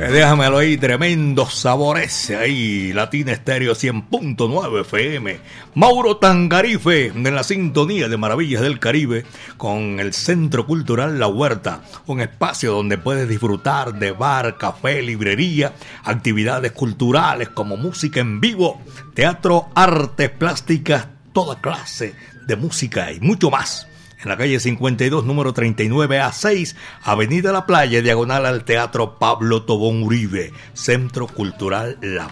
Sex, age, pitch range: male, 60-79, 115-155 Hz